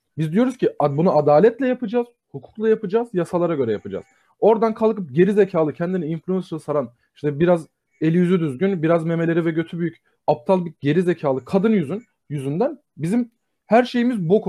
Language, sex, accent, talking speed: Turkish, male, native, 155 wpm